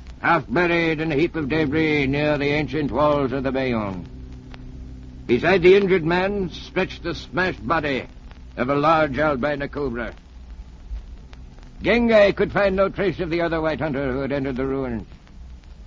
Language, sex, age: English, male, 60-79